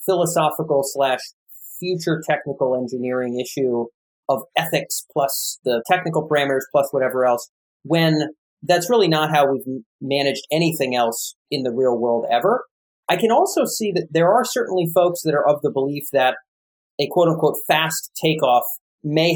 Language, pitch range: English, 135-175 Hz